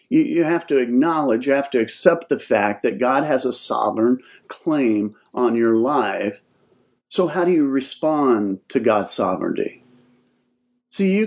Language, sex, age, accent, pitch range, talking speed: English, male, 50-69, American, 125-200 Hz, 155 wpm